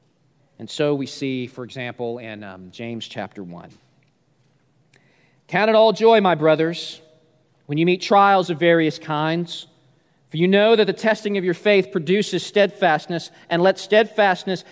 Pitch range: 175-240 Hz